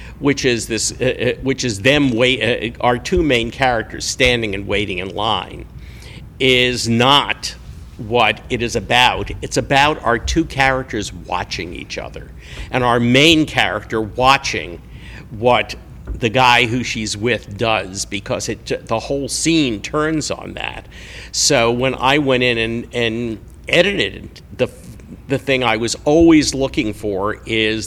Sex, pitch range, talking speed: male, 105-130 Hz, 150 wpm